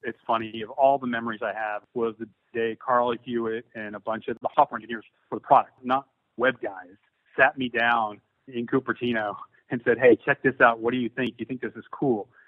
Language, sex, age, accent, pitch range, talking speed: English, male, 30-49, American, 115-130 Hz, 220 wpm